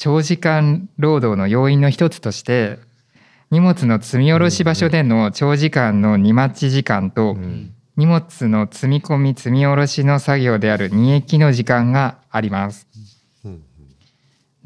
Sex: male